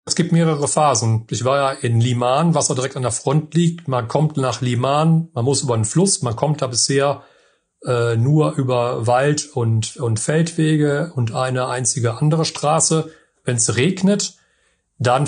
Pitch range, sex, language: 120-140 Hz, male, German